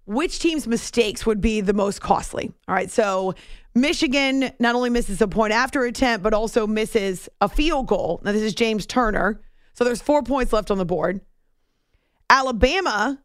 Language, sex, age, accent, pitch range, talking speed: English, female, 30-49, American, 200-245 Hz, 175 wpm